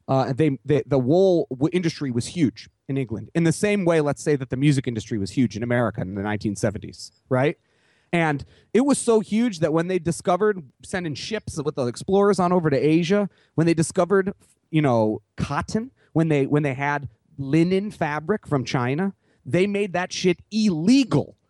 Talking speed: 185 wpm